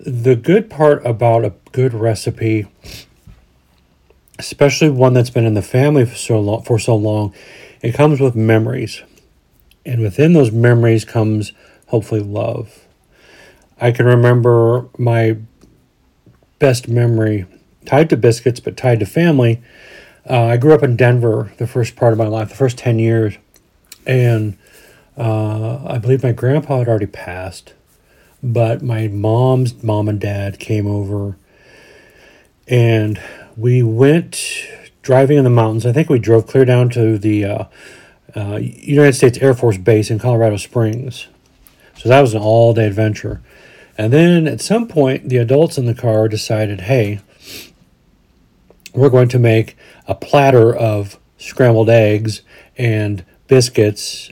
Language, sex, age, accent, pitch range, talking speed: English, male, 40-59, American, 110-125 Hz, 145 wpm